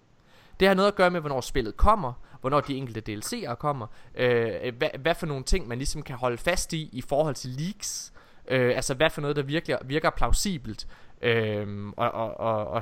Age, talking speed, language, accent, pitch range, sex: 20-39, 195 wpm, Danish, native, 120-170 Hz, male